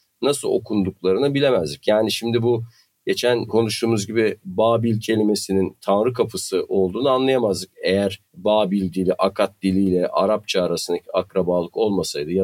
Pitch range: 95-125 Hz